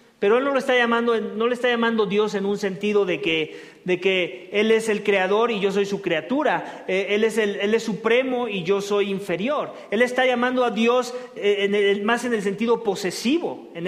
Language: English